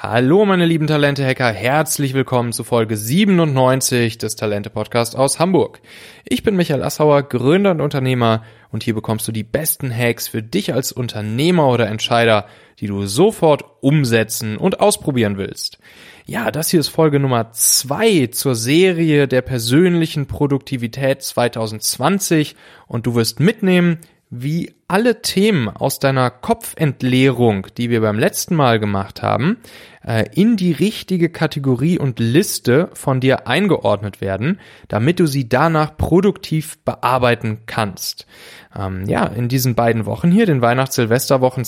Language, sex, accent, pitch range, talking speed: German, male, German, 115-155 Hz, 140 wpm